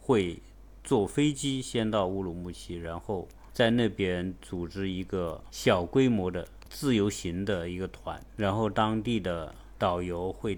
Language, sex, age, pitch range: Chinese, male, 50-69, 90-115 Hz